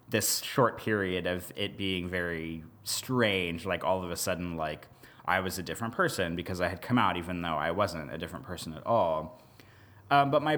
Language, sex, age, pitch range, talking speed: English, male, 20-39, 95-125 Hz, 205 wpm